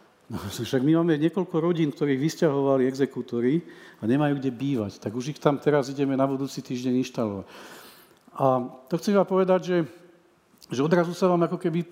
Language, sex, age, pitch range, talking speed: Czech, male, 40-59, 140-175 Hz, 175 wpm